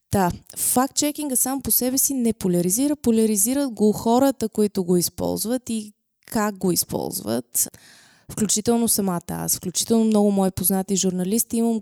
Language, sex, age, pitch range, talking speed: Bulgarian, female, 20-39, 190-255 Hz, 135 wpm